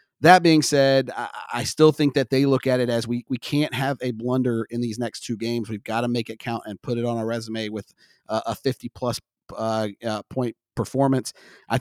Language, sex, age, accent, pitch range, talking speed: English, male, 40-59, American, 115-135 Hz, 210 wpm